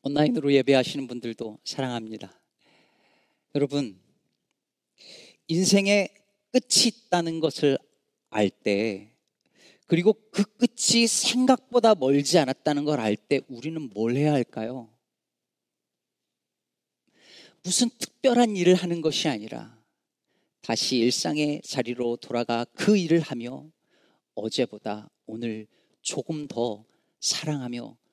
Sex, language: male, Korean